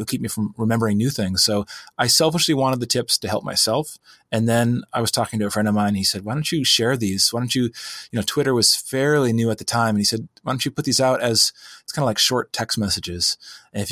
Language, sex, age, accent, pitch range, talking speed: English, male, 30-49, American, 105-125 Hz, 280 wpm